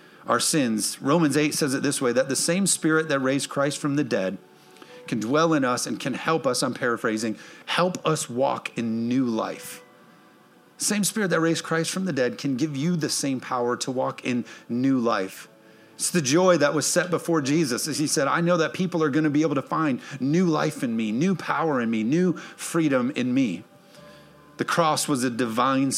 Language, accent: English, American